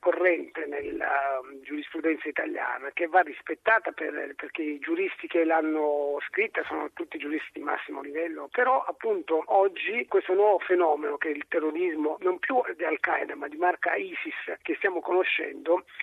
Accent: native